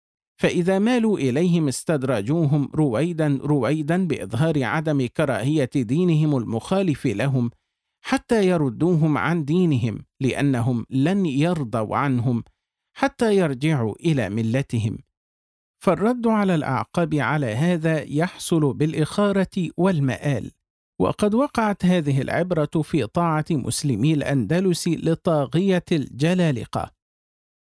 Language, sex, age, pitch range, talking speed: Arabic, male, 50-69, 140-175 Hz, 90 wpm